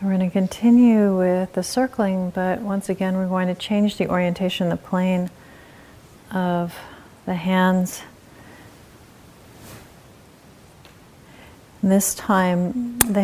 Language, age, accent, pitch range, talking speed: English, 40-59, American, 165-185 Hz, 105 wpm